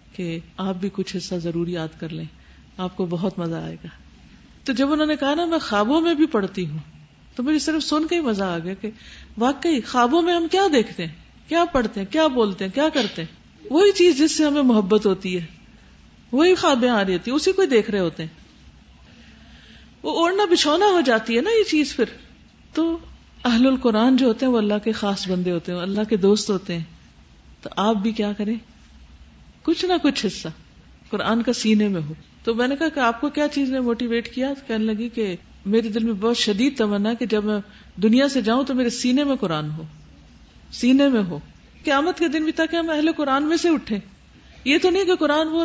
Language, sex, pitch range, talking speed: Urdu, female, 195-290 Hz, 220 wpm